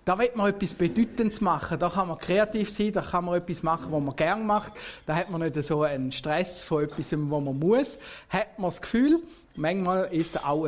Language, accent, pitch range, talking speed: German, Austrian, 155-205 Hz, 225 wpm